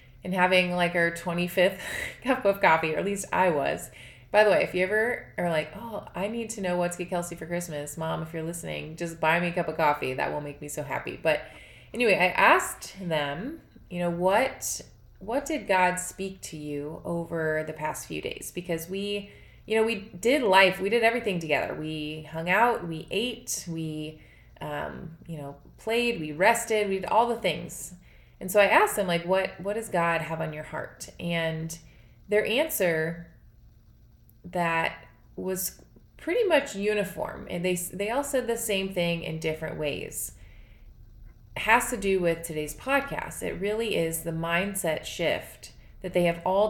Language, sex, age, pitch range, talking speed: English, female, 20-39, 160-200 Hz, 190 wpm